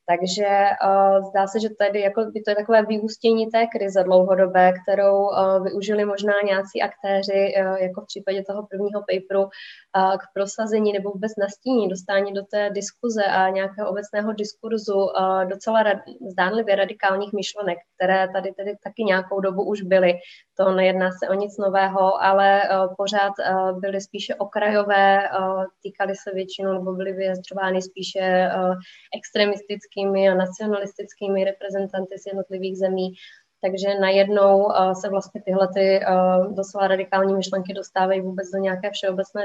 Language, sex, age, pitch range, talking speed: Czech, female, 20-39, 190-200 Hz, 150 wpm